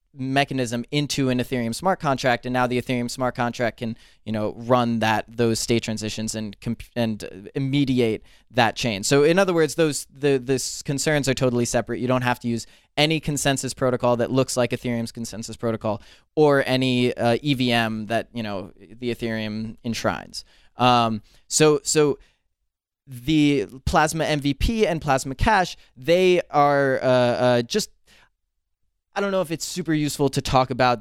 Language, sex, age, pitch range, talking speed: English, male, 20-39, 115-135 Hz, 165 wpm